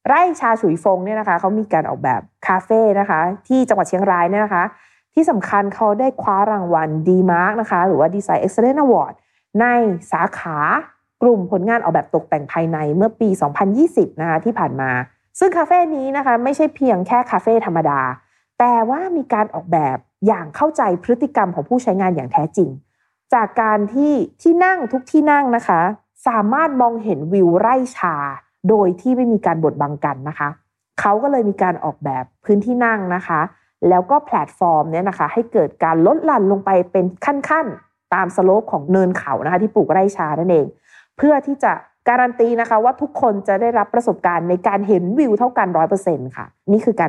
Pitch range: 175-235 Hz